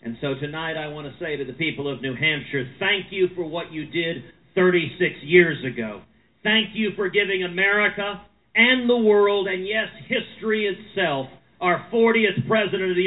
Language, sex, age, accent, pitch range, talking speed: English, male, 50-69, American, 150-195 Hz, 180 wpm